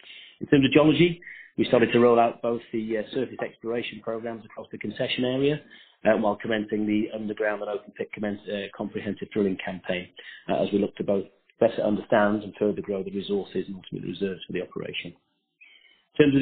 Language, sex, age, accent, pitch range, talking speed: English, male, 40-59, British, 100-120 Hz, 200 wpm